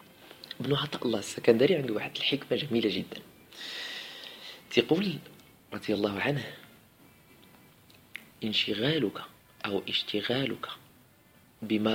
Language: Arabic